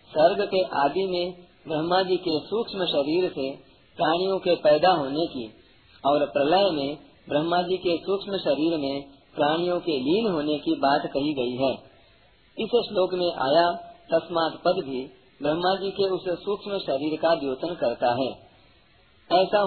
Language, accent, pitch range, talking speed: Hindi, native, 145-185 Hz, 155 wpm